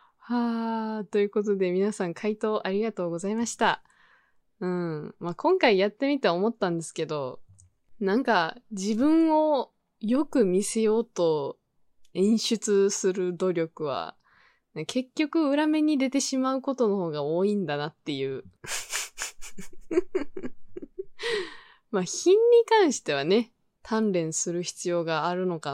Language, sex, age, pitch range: Japanese, female, 20-39, 180-265 Hz